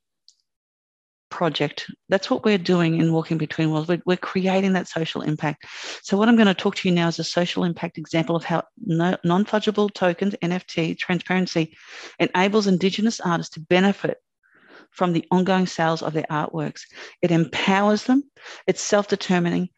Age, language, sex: 40-59, English, female